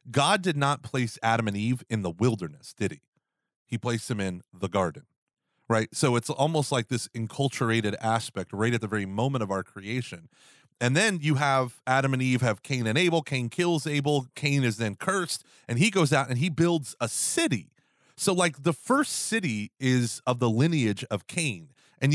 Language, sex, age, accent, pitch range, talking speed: English, male, 30-49, American, 110-150 Hz, 200 wpm